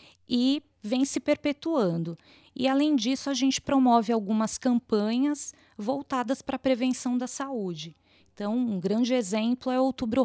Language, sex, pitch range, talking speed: Portuguese, female, 215-260 Hz, 145 wpm